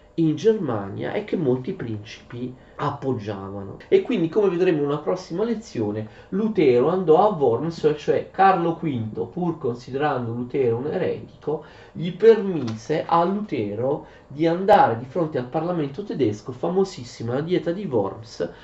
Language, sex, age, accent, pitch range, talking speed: Italian, male, 30-49, native, 125-180 Hz, 140 wpm